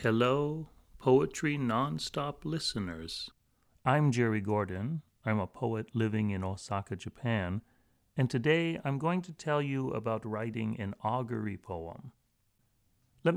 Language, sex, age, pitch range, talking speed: English, male, 40-59, 105-145 Hz, 120 wpm